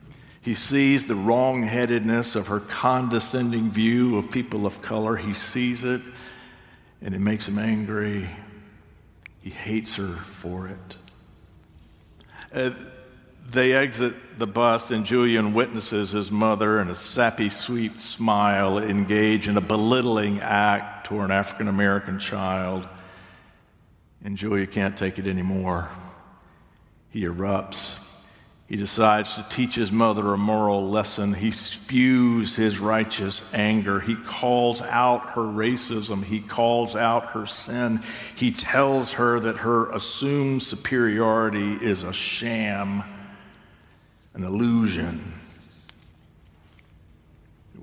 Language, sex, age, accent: English, male, 60-79, American